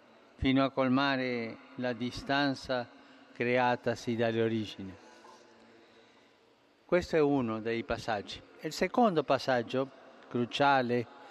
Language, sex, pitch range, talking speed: Italian, male, 130-180 Hz, 90 wpm